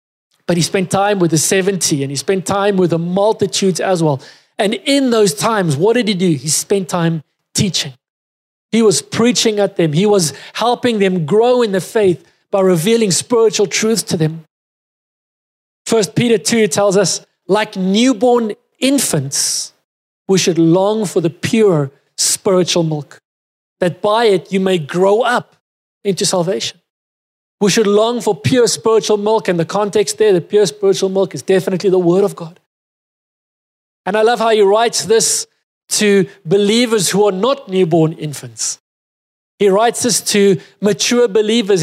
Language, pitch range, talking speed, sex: English, 175-220 Hz, 160 wpm, male